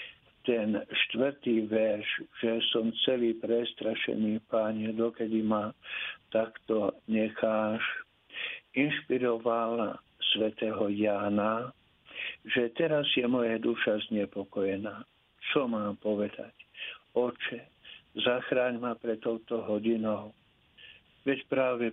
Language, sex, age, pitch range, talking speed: Slovak, male, 60-79, 105-120 Hz, 90 wpm